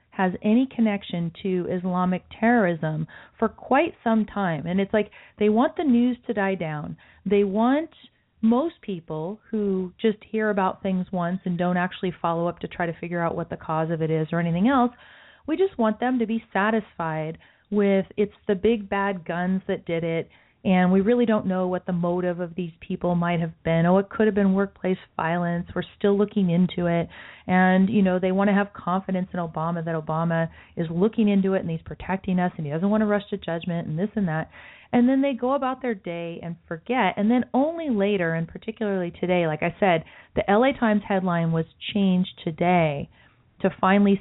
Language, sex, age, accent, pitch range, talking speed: English, female, 30-49, American, 170-210 Hz, 205 wpm